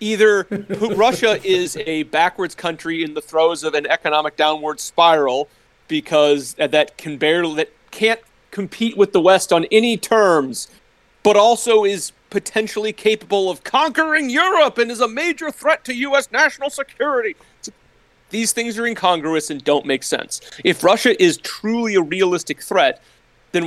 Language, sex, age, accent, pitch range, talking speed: English, male, 30-49, American, 155-220 Hz, 145 wpm